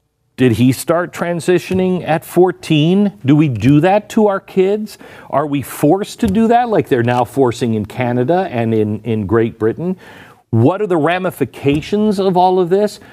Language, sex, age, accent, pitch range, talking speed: English, male, 50-69, American, 115-185 Hz, 175 wpm